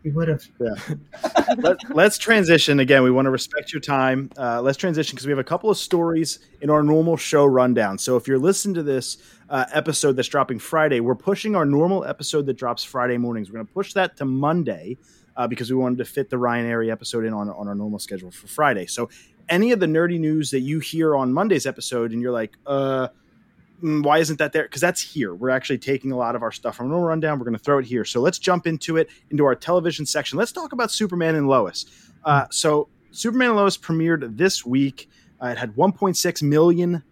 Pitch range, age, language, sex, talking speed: 125-165 Hz, 30-49, English, male, 230 wpm